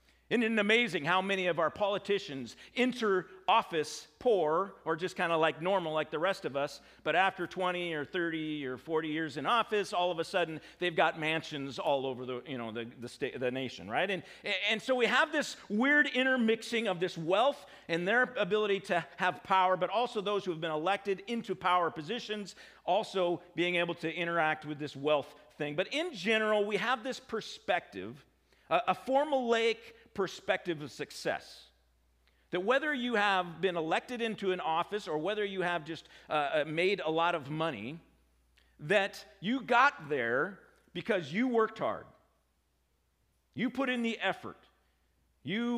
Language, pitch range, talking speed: English, 155-220 Hz, 175 wpm